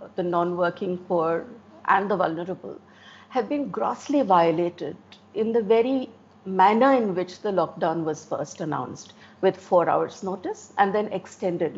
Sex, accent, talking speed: female, Indian, 145 wpm